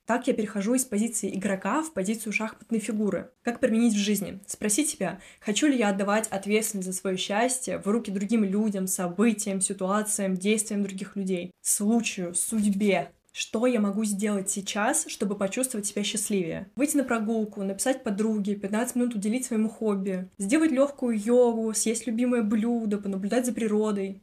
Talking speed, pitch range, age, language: 155 wpm, 195-230 Hz, 20-39, Russian